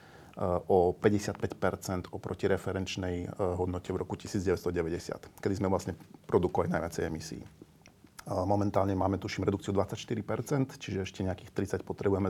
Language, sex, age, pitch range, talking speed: Slovak, male, 40-59, 95-115 Hz, 115 wpm